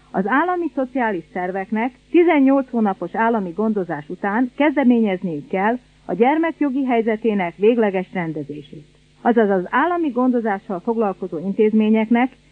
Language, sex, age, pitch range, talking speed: Hungarian, female, 40-59, 190-255 Hz, 105 wpm